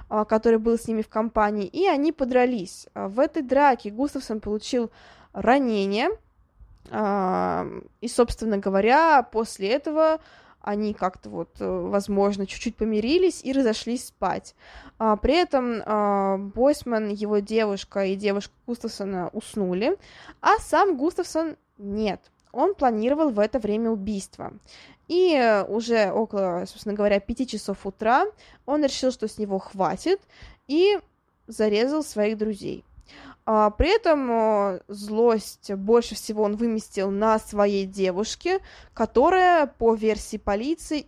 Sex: female